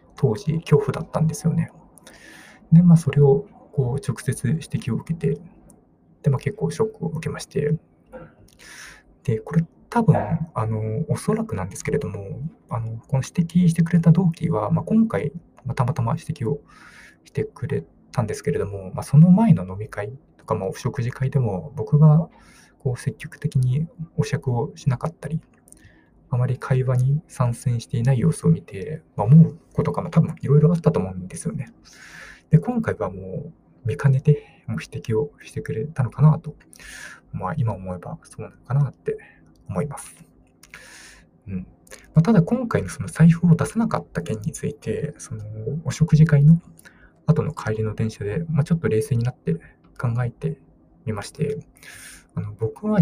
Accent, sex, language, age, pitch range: native, male, Japanese, 20-39, 120-160 Hz